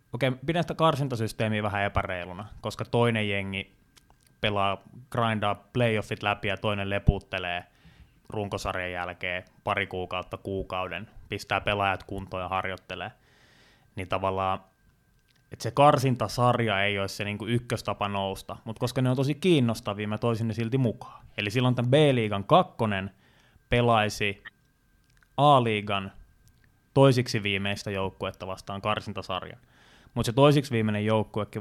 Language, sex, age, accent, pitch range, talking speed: Finnish, male, 20-39, native, 100-125 Hz, 120 wpm